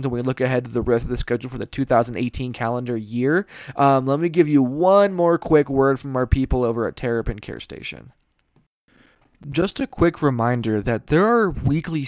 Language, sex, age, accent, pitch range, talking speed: English, male, 20-39, American, 115-140 Hz, 200 wpm